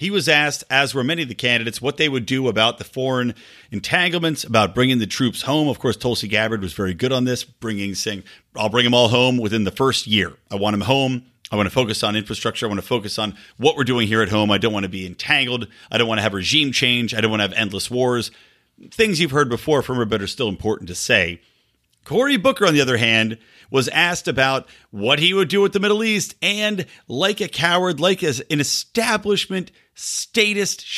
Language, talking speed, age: English, 230 wpm, 40-59